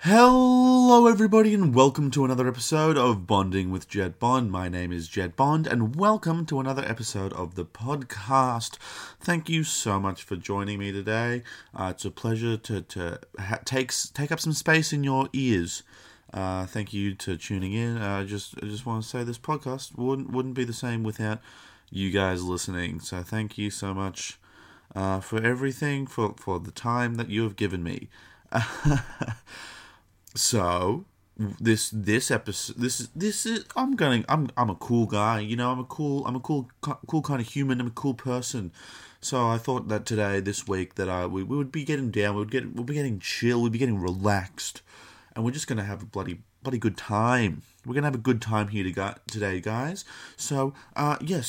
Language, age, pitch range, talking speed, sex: English, 30-49, 100-140 Hz, 200 wpm, male